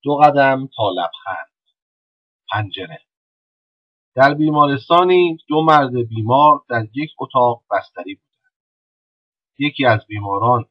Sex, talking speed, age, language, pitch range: male, 95 wpm, 40-59, Persian, 105-135 Hz